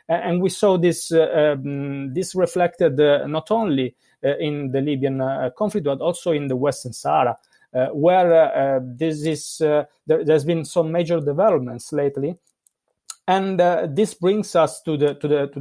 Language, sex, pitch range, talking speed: English, male, 135-175 Hz, 180 wpm